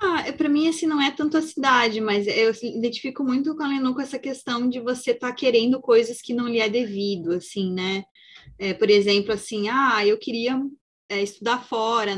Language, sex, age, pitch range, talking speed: Portuguese, female, 20-39, 205-270 Hz, 190 wpm